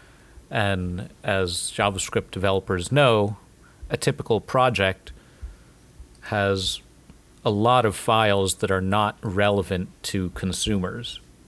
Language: English